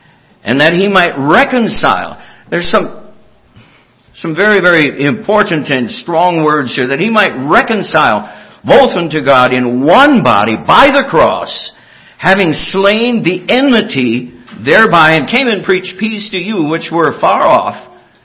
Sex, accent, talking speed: male, American, 145 wpm